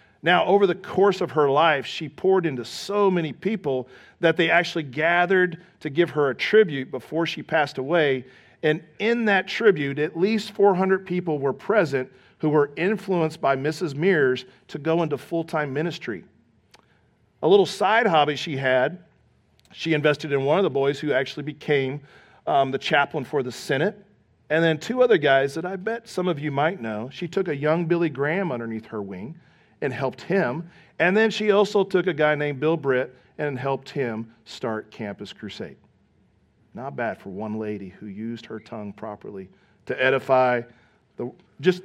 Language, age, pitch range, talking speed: English, 40-59, 130-175 Hz, 180 wpm